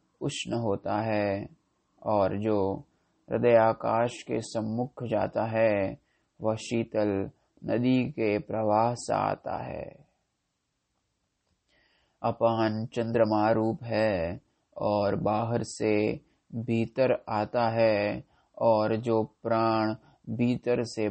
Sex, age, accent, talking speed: male, 20-39, native, 95 wpm